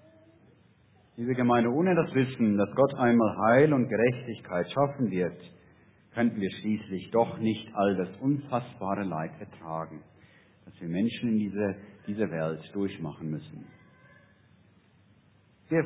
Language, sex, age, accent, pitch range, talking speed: German, male, 50-69, German, 100-145 Hz, 120 wpm